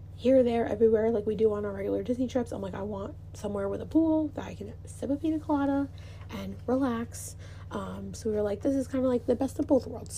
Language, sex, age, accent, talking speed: English, female, 20-39, American, 255 wpm